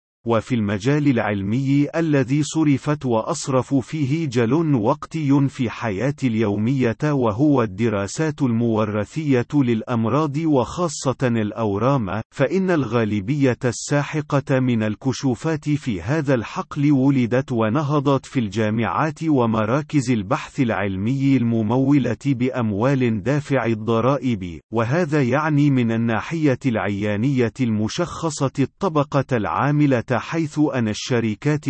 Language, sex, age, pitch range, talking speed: Arabic, male, 40-59, 120-150 Hz, 90 wpm